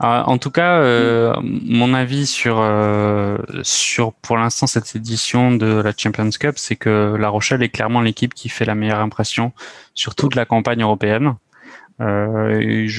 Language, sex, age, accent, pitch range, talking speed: French, male, 20-39, French, 105-125 Hz, 160 wpm